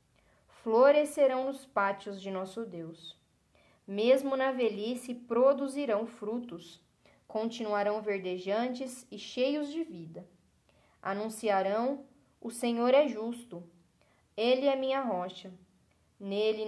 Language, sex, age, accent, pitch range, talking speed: Portuguese, female, 10-29, Brazilian, 195-235 Hz, 95 wpm